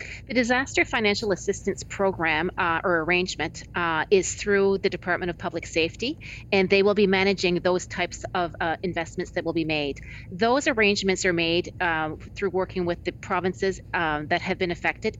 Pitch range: 170-200 Hz